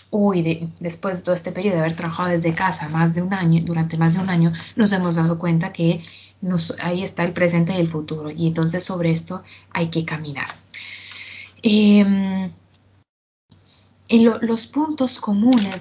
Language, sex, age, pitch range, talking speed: Italian, female, 20-39, 170-205 Hz, 180 wpm